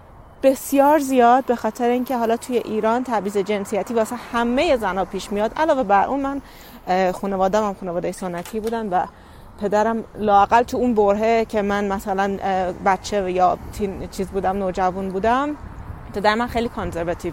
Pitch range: 195-240 Hz